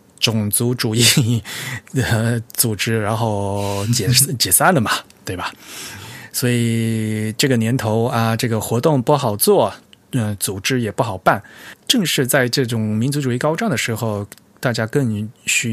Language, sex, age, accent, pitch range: Chinese, male, 20-39, native, 105-135 Hz